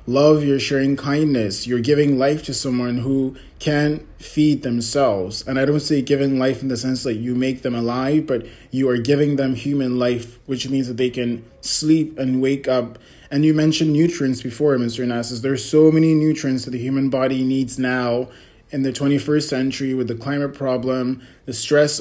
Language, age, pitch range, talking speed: English, 20-39, 125-145 Hz, 190 wpm